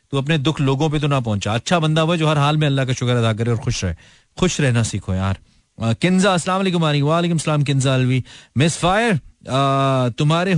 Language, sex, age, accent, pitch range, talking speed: Hindi, male, 30-49, native, 130-175 Hz, 175 wpm